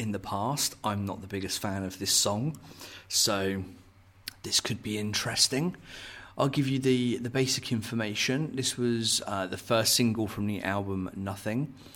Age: 40-59